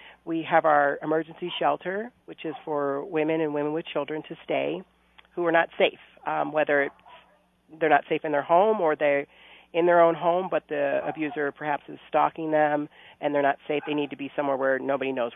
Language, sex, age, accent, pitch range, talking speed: English, female, 40-59, American, 145-165 Hz, 205 wpm